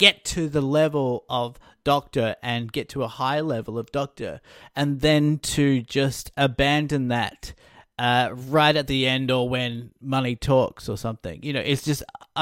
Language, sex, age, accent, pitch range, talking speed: English, male, 30-49, Australian, 120-150 Hz, 170 wpm